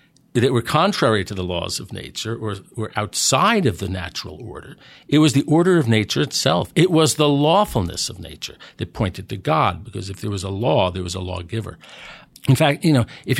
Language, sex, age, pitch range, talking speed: English, male, 50-69, 100-140 Hz, 210 wpm